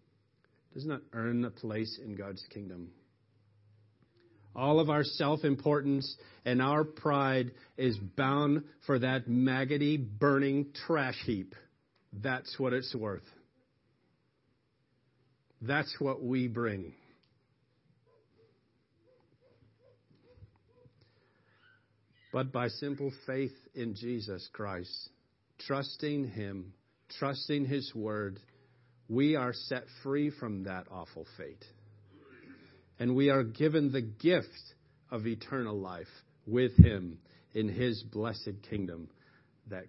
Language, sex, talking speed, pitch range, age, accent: English, male, 100 wpm, 110-140 Hz, 50-69, American